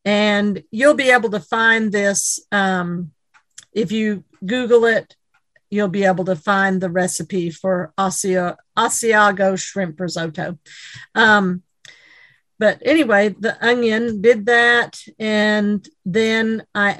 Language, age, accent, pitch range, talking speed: English, 50-69, American, 195-230 Hz, 115 wpm